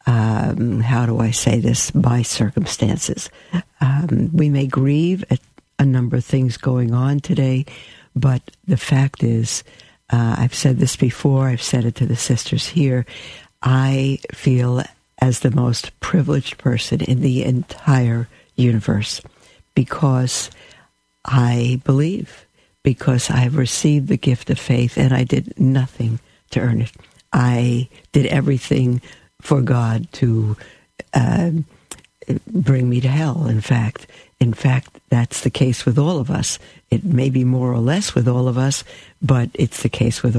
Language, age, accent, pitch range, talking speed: English, 60-79, American, 120-140 Hz, 150 wpm